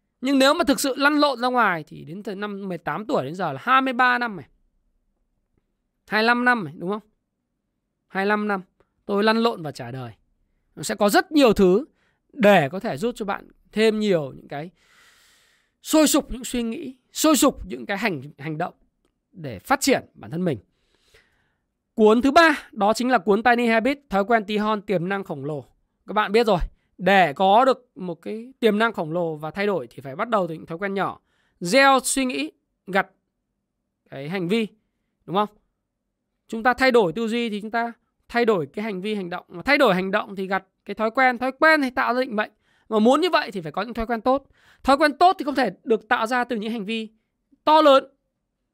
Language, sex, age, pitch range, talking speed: Vietnamese, male, 20-39, 195-260 Hz, 220 wpm